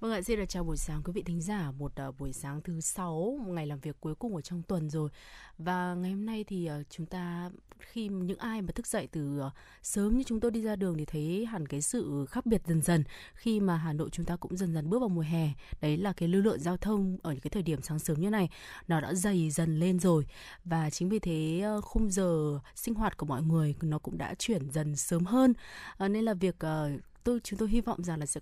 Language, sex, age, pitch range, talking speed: Vietnamese, female, 20-39, 155-200 Hz, 265 wpm